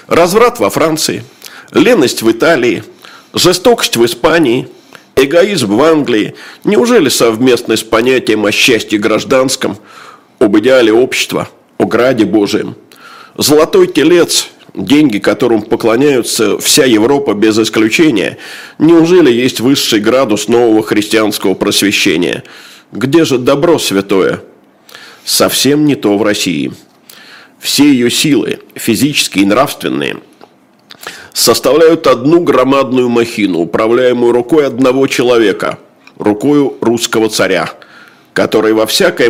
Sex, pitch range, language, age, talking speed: male, 115-160 Hz, Russian, 50-69, 105 wpm